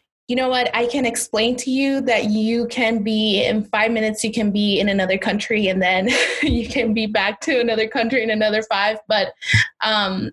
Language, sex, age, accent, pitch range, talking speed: English, female, 20-39, American, 195-225 Hz, 205 wpm